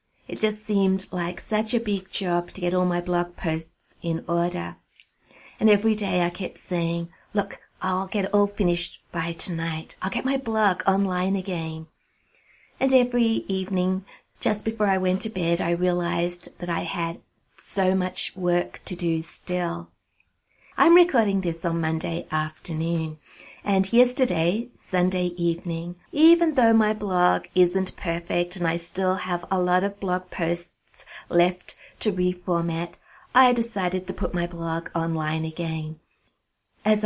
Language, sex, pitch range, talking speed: English, female, 170-195 Hz, 150 wpm